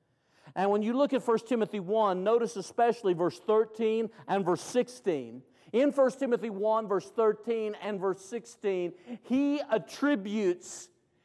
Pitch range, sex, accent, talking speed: 150-235 Hz, male, American, 140 wpm